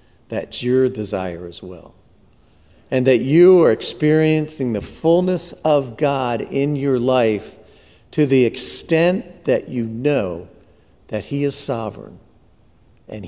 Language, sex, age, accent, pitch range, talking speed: English, male, 50-69, American, 105-155 Hz, 125 wpm